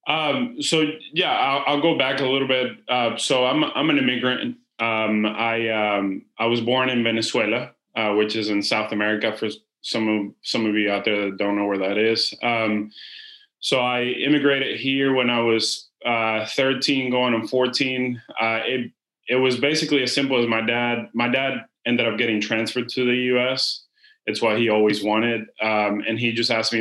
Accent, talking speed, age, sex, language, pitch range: American, 195 wpm, 20-39, male, English, 110-135 Hz